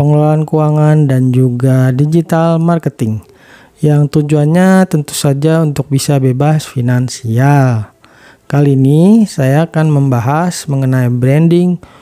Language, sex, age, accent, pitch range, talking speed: Indonesian, male, 40-59, native, 135-160 Hz, 105 wpm